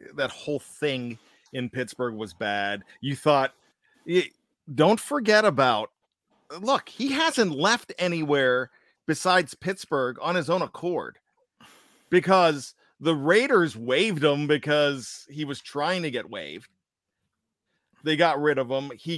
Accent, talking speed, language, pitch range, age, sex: American, 130 wpm, English, 140-200 Hz, 40-59, male